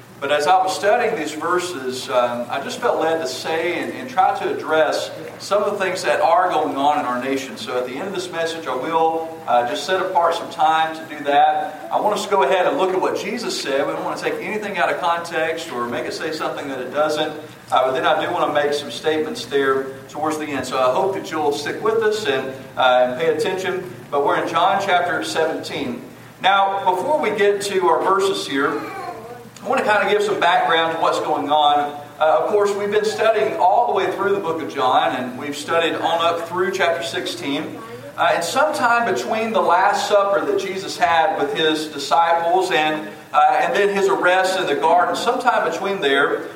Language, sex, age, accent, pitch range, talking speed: English, male, 40-59, American, 150-200 Hz, 225 wpm